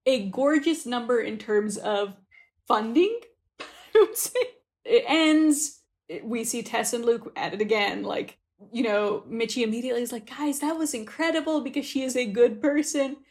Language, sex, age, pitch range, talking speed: English, female, 30-49, 215-295 Hz, 155 wpm